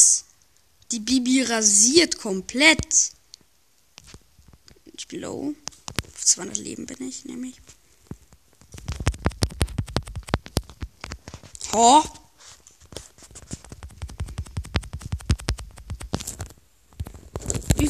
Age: 20-39